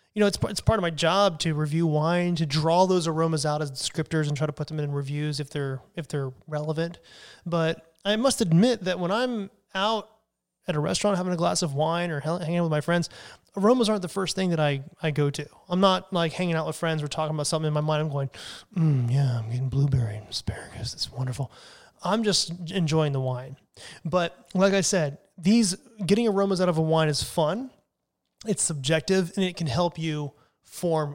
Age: 20-39